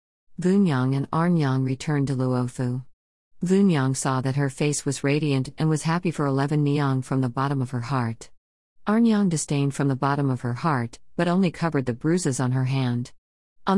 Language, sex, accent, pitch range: English, female, American, 130-160 Hz